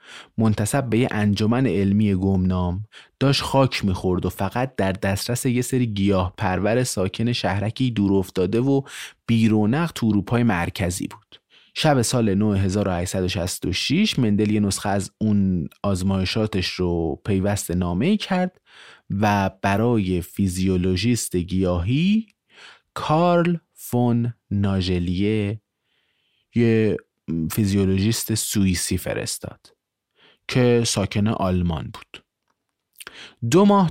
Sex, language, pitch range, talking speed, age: male, Persian, 95-125 Hz, 100 wpm, 30-49